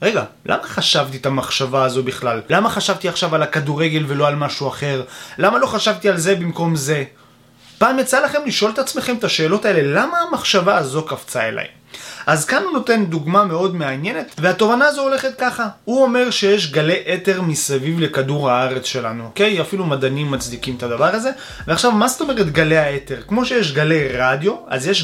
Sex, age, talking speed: male, 20-39, 180 wpm